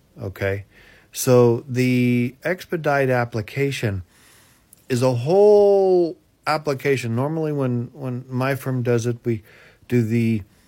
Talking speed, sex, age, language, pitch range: 105 wpm, male, 50-69, English, 105-130 Hz